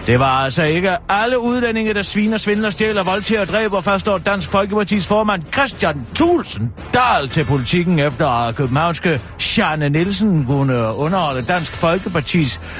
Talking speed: 150 wpm